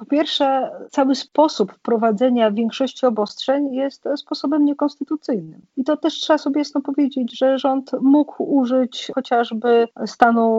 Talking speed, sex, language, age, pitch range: 130 wpm, female, Polish, 40-59, 225-260 Hz